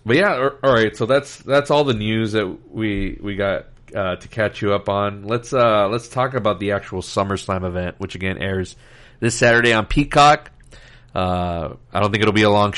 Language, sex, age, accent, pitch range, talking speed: English, male, 40-59, American, 100-125 Hz, 200 wpm